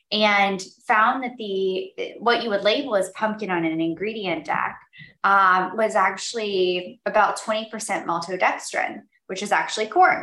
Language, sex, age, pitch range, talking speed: English, female, 10-29, 175-220 Hz, 140 wpm